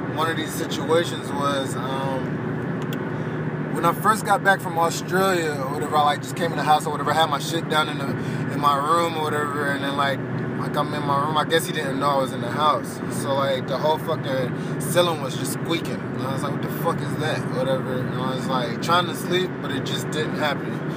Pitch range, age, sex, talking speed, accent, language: 135-155 Hz, 20-39, male, 245 wpm, American, English